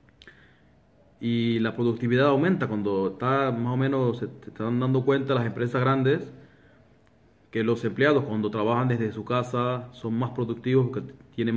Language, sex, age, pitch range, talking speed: Spanish, male, 30-49, 110-135 Hz, 150 wpm